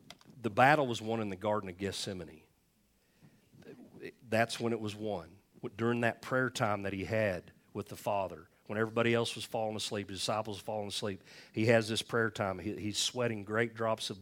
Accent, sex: American, male